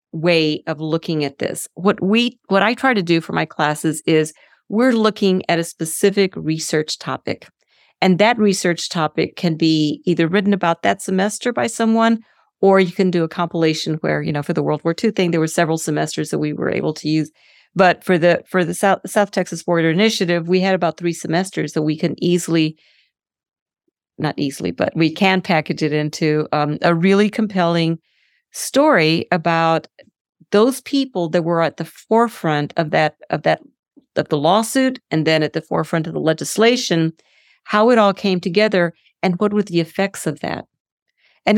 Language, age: English, 50-69